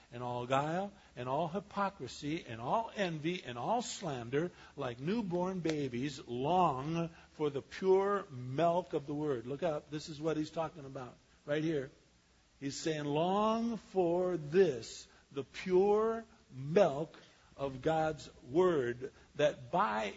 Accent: American